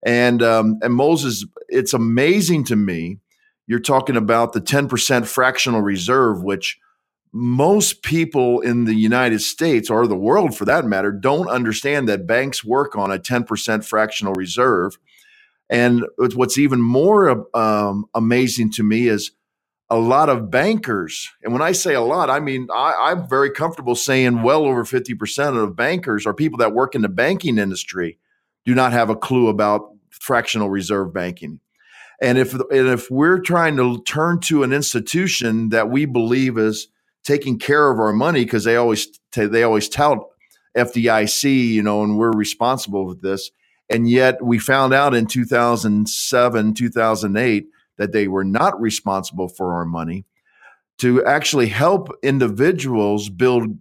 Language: English